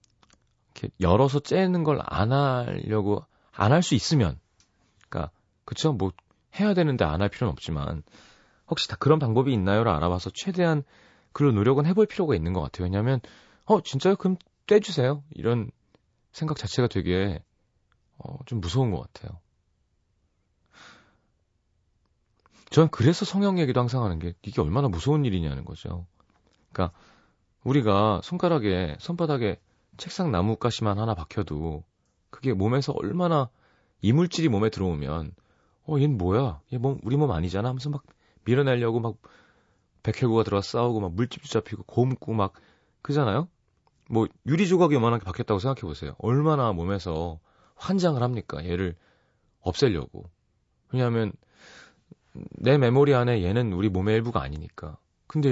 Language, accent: Korean, native